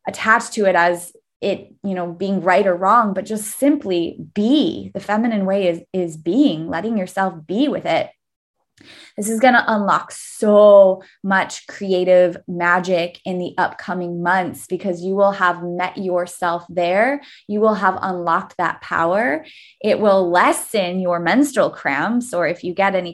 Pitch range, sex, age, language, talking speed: 175-215 Hz, female, 20-39, English, 165 wpm